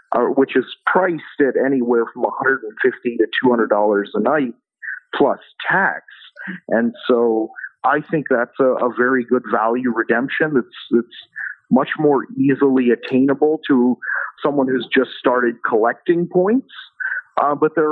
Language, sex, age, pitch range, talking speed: English, male, 50-69, 115-145 Hz, 140 wpm